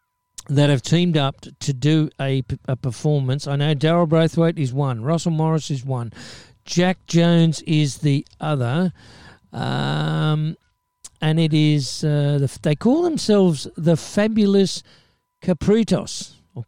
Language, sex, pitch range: English, male, 135-170 Hz